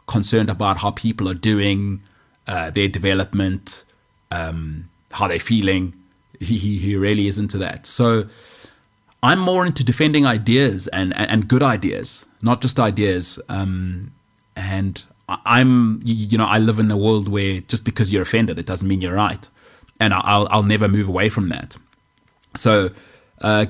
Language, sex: English, male